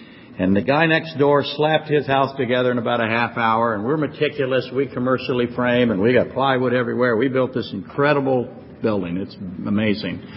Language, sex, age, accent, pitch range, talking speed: English, male, 60-79, American, 110-140 Hz, 185 wpm